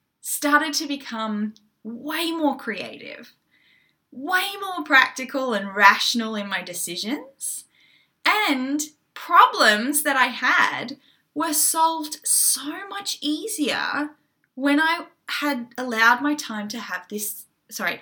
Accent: Australian